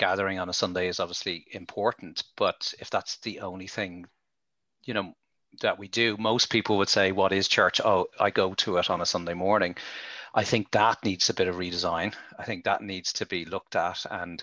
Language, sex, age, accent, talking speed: English, male, 30-49, Irish, 210 wpm